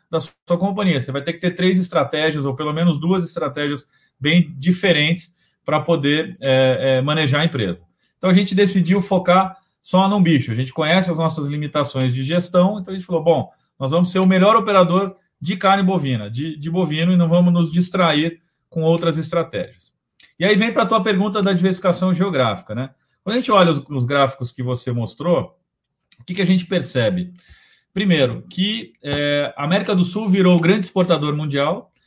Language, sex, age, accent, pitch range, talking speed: Portuguese, male, 40-59, Brazilian, 145-185 Hz, 195 wpm